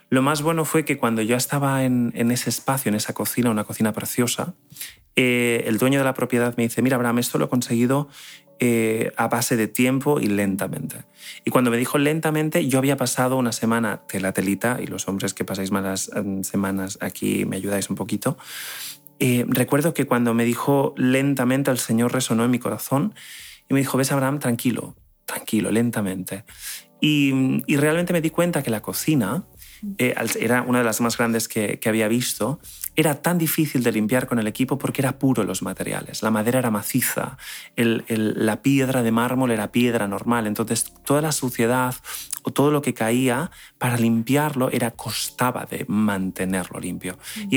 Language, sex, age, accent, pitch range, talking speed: Spanish, male, 30-49, Spanish, 115-135 Hz, 185 wpm